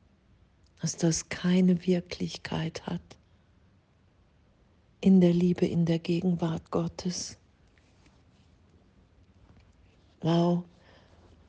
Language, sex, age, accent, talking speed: German, female, 50-69, German, 70 wpm